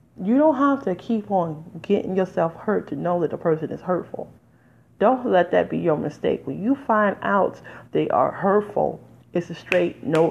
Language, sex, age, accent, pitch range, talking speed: English, female, 30-49, American, 145-185 Hz, 190 wpm